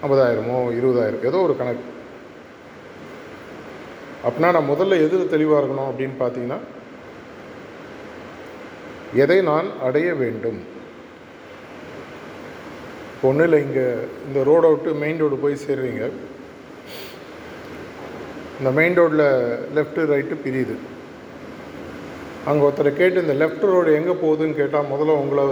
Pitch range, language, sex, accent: 130-155 Hz, Tamil, male, native